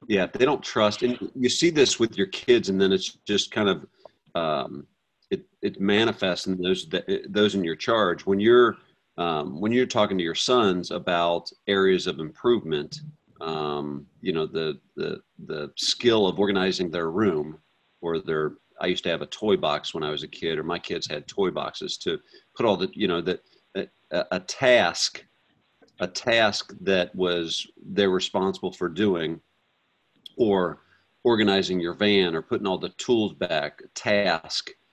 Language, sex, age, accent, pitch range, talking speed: English, male, 40-59, American, 85-105 Hz, 170 wpm